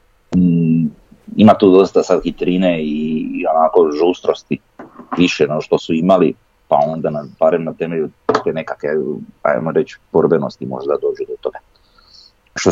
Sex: male